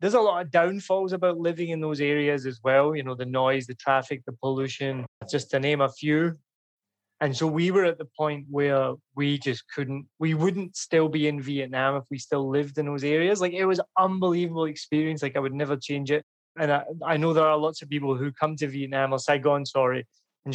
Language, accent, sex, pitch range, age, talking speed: English, British, male, 140-165 Hz, 20-39, 230 wpm